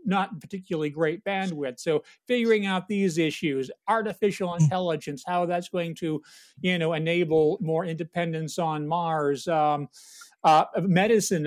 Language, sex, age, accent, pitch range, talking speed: English, male, 40-59, American, 160-195 Hz, 130 wpm